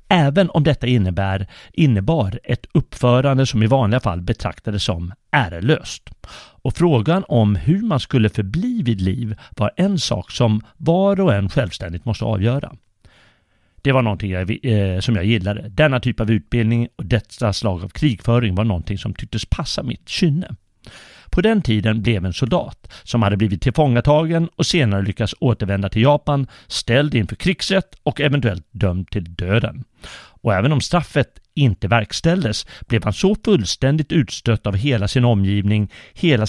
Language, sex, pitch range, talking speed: Swedish, male, 105-140 Hz, 160 wpm